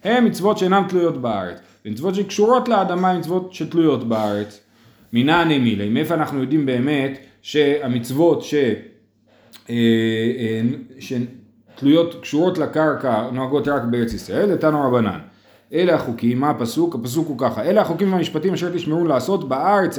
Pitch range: 135-195 Hz